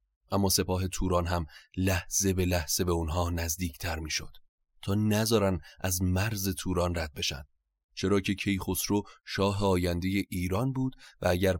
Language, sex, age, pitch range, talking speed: Persian, male, 30-49, 85-95 Hz, 140 wpm